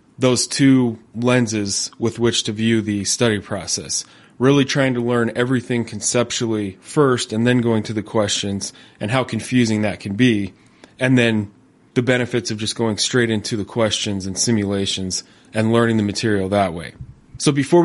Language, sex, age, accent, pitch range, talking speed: English, male, 20-39, American, 105-125 Hz, 170 wpm